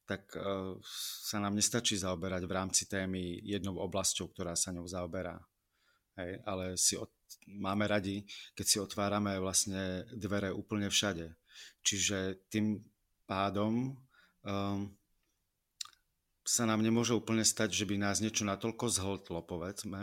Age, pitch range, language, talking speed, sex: 30-49, 95-105 Hz, Czech, 130 wpm, male